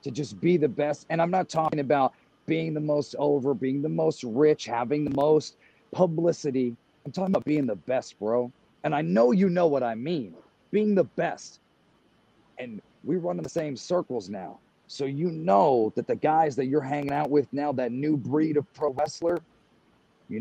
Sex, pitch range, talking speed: male, 135-170 Hz, 195 wpm